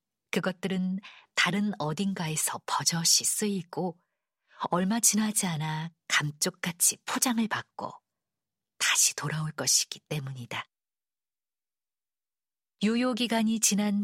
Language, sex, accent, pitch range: Korean, female, native, 160-215 Hz